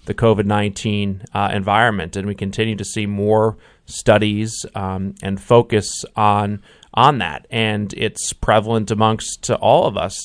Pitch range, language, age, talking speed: 105-125 Hz, English, 30-49, 145 wpm